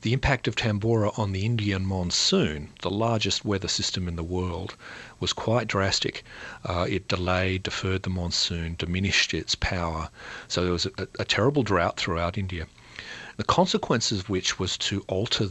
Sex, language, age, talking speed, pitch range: male, English, 40-59, 165 wpm, 90-110 Hz